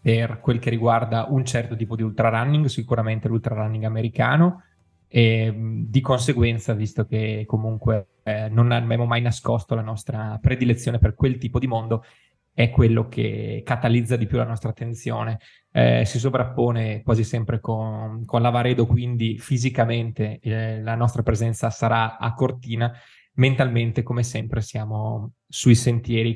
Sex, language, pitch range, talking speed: male, Italian, 110-125 Hz, 145 wpm